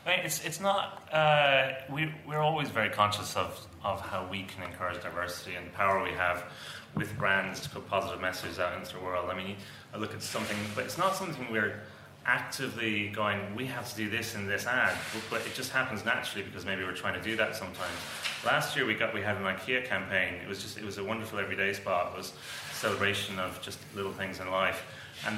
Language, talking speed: English, 225 wpm